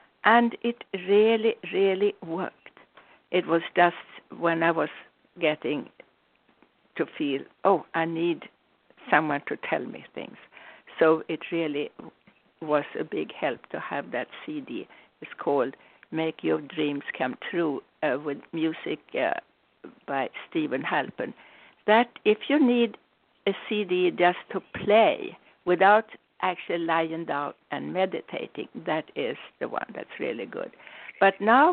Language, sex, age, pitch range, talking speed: English, female, 60-79, 165-215 Hz, 135 wpm